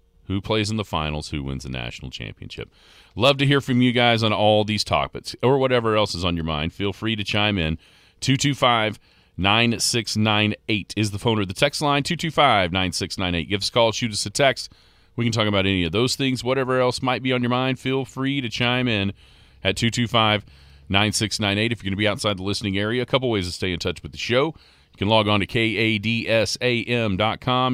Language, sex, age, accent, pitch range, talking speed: English, male, 40-59, American, 90-115 Hz, 210 wpm